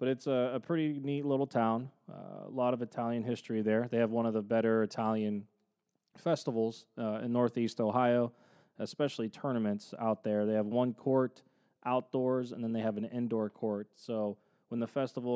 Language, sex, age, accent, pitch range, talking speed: English, male, 20-39, American, 110-130 Hz, 185 wpm